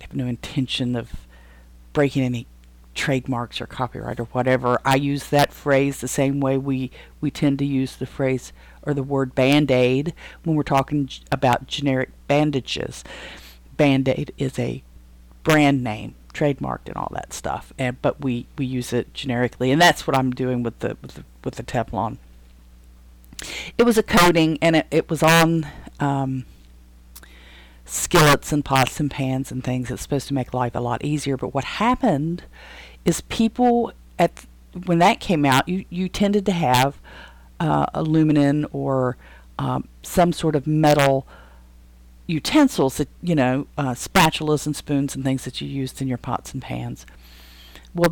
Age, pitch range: 50-69, 115-150 Hz